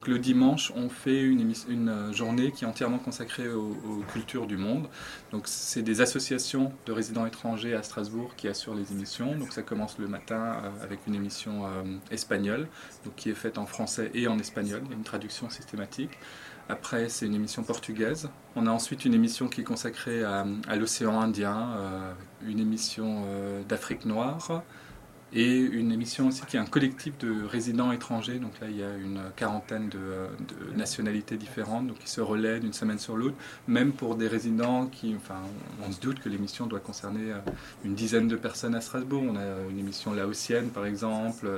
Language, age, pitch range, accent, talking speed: German, 20-39, 105-125 Hz, French, 180 wpm